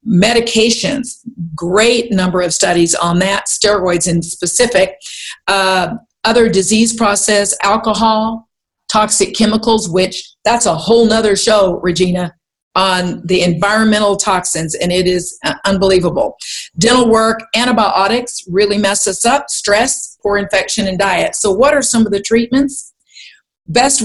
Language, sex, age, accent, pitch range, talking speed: English, female, 50-69, American, 175-220 Hz, 130 wpm